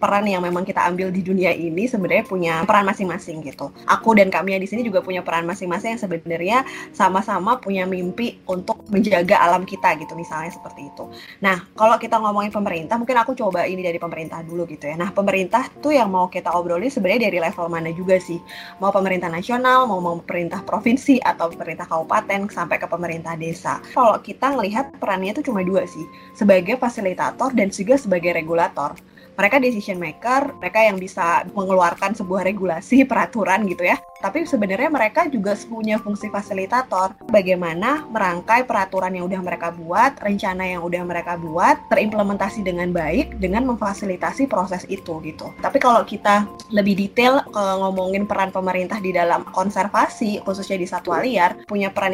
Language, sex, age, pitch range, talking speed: Indonesian, female, 20-39, 180-220 Hz, 165 wpm